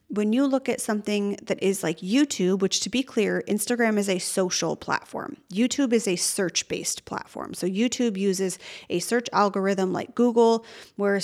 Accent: American